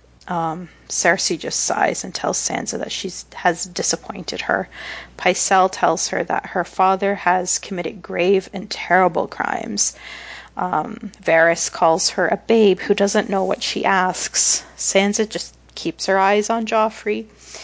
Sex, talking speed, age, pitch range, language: female, 145 wpm, 30-49, 180-205 Hz, English